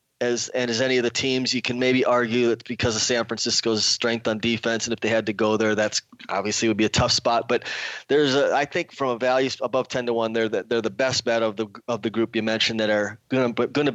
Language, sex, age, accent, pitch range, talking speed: English, male, 20-39, American, 115-135 Hz, 265 wpm